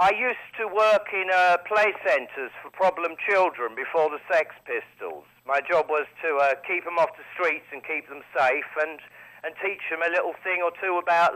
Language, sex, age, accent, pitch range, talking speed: English, male, 50-69, British, 160-195 Hz, 205 wpm